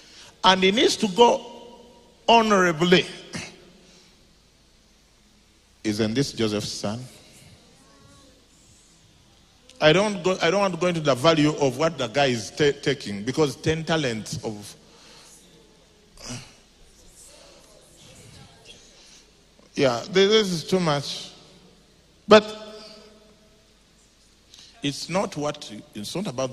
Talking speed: 95 wpm